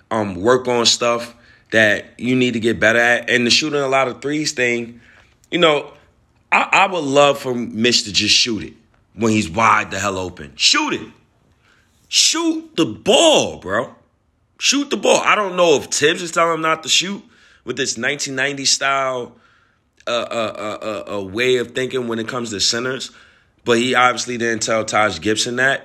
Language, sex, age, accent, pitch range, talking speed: English, male, 30-49, American, 110-130 Hz, 190 wpm